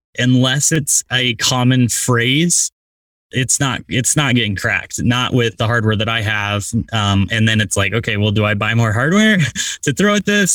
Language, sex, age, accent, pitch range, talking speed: English, male, 10-29, American, 115-140 Hz, 195 wpm